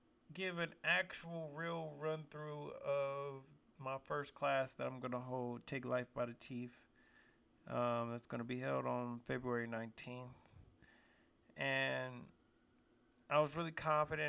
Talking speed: 145 wpm